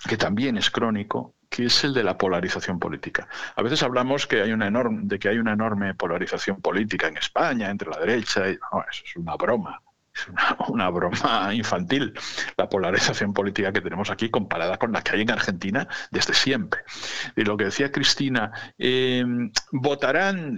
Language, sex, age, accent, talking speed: Spanish, male, 60-79, Spanish, 185 wpm